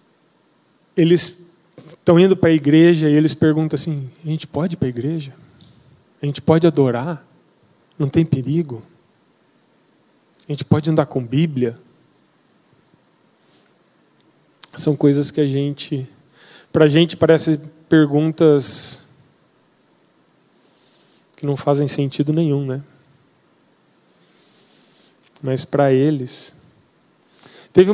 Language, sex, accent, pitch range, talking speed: Portuguese, male, Brazilian, 140-165 Hz, 105 wpm